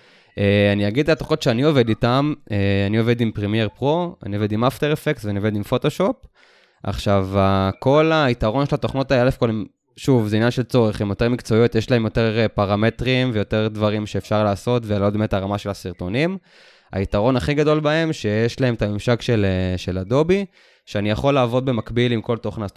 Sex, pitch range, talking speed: male, 105-135 Hz, 190 wpm